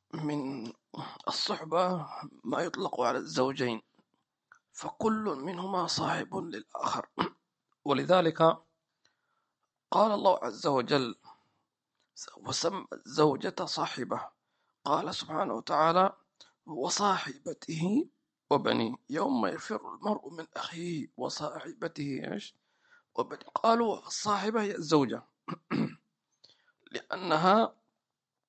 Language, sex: English, male